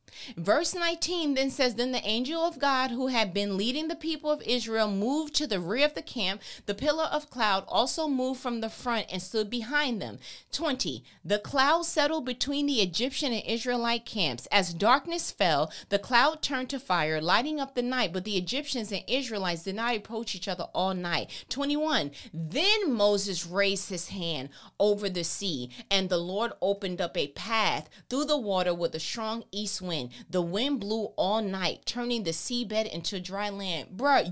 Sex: female